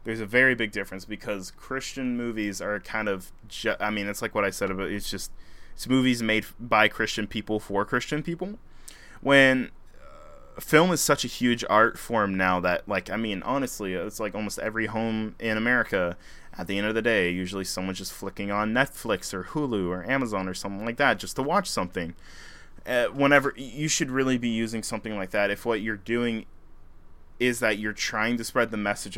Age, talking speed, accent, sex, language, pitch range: 20-39, 200 wpm, American, male, English, 95-120 Hz